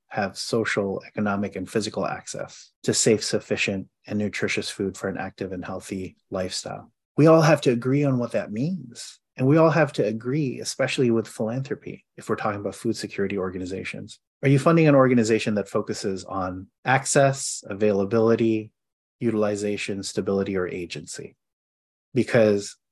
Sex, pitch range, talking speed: male, 100-125 Hz, 150 wpm